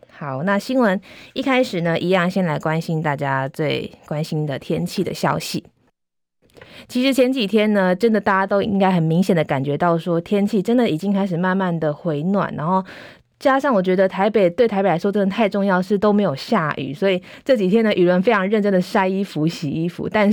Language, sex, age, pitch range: Chinese, female, 20-39, 165-205 Hz